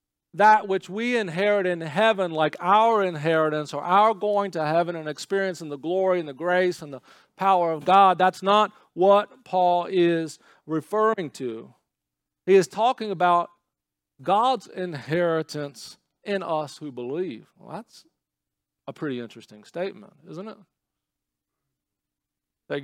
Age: 40-59